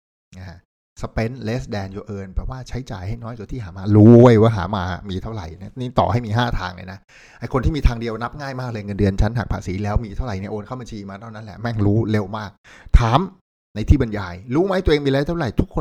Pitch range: 95-120 Hz